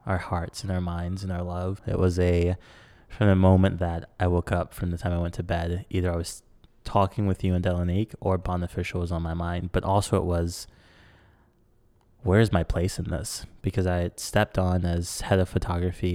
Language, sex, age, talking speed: English, male, 20-39, 210 wpm